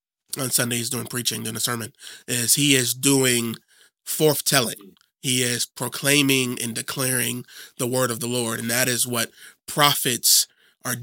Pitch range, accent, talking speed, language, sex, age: 120-140 Hz, American, 165 wpm, English, male, 30-49